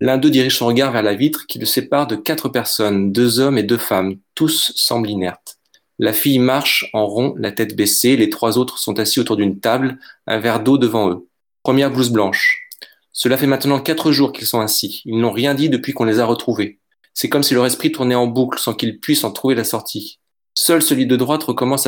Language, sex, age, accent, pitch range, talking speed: French, male, 20-39, French, 115-140 Hz, 230 wpm